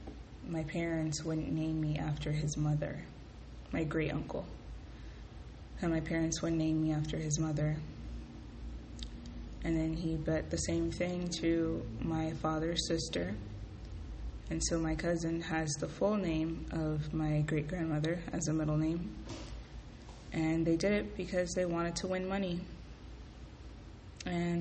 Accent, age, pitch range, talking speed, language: American, 20-39, 145-165 Hz, 140 wpm, English